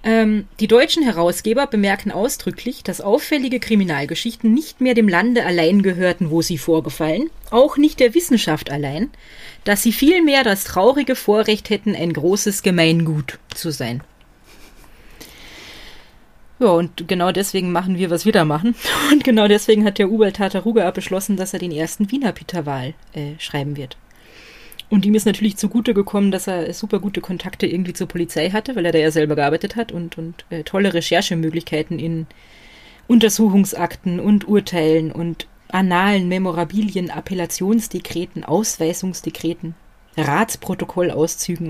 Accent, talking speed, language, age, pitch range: German, 140 wpm, German, 30-49, 170-215 Hz